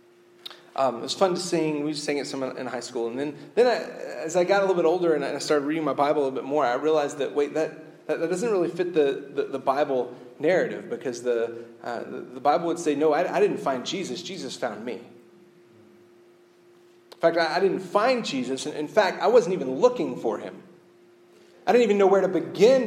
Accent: American